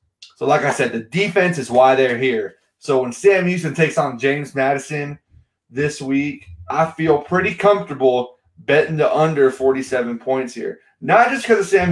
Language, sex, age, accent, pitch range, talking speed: English, male, 20-39, American, 135-185 Hz, 175 wpm